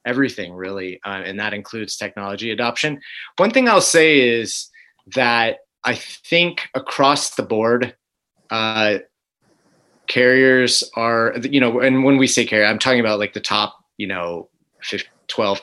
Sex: male